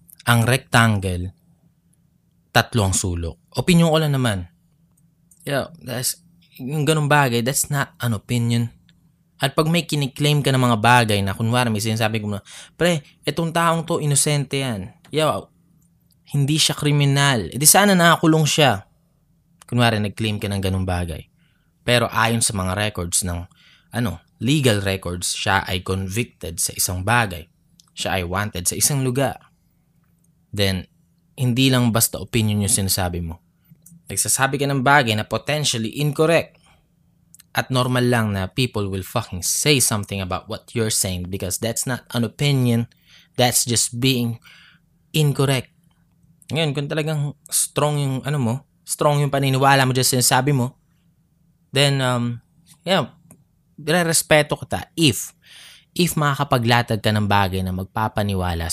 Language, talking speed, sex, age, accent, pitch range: Filipino, 140 wpm, male, 20-39, native, 105-155 Hz